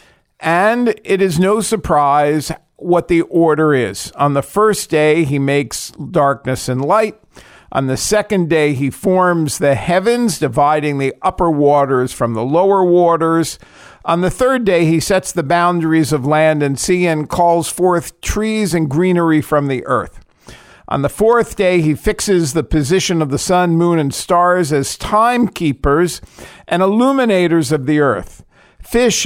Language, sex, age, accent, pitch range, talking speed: English, male, 50-69, American, 145-190 Hz, 160 wpm